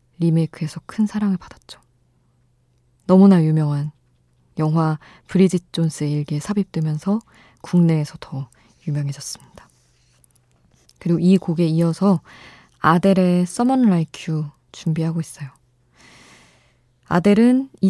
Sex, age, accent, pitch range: female, 20-39, native, 150-190 Hz